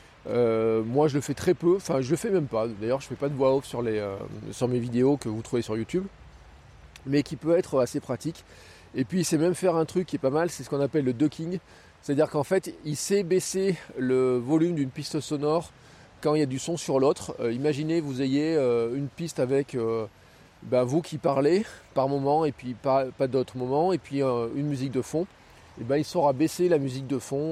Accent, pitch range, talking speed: French, 120-160 Hz, 240 wpm